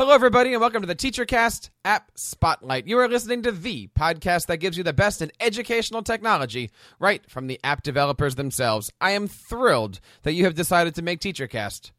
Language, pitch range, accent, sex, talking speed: English, 145-200 Hz, American, male, 195 wpm